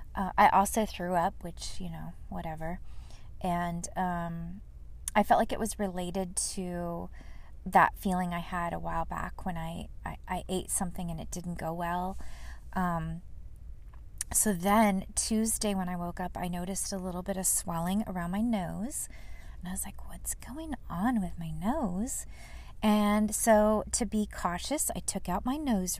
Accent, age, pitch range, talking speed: American, 30-49, 170-200 Hz, 170 wpm